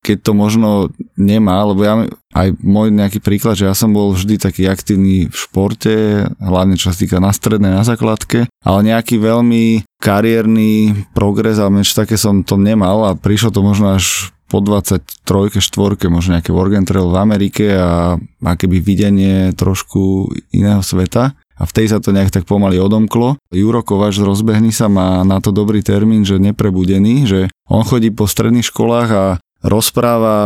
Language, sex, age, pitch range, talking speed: Slovak, male, 20-39, 95-110 Hz, 165 wpm